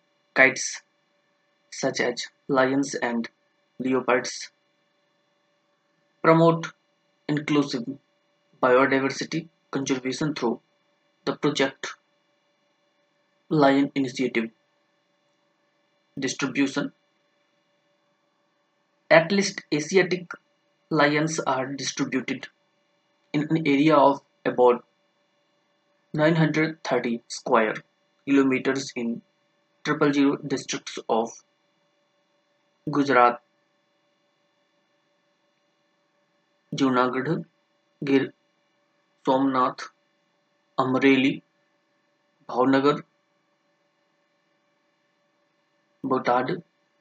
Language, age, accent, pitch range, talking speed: English, 20-39, Indian, 130-185 Hz, 55 wpm